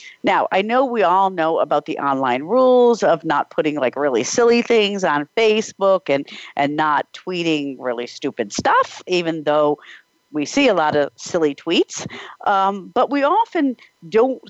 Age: 50-69